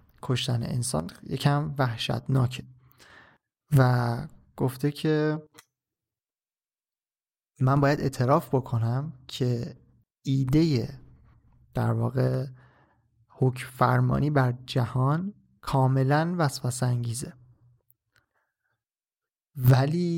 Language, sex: Persian, male